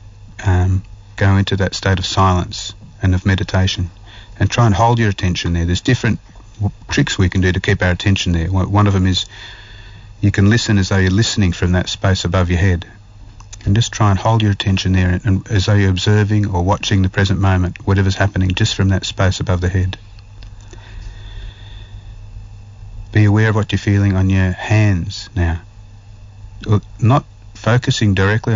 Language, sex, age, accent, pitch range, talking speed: English, male, 40-59, Australian, 95-105 Hz, 180 wpm